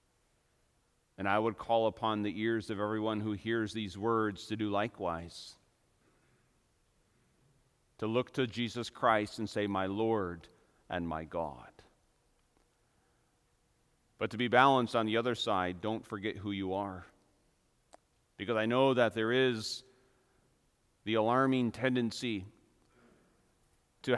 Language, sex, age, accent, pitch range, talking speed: English, male, 40-59, American, 105-130 Hz, 125 wpm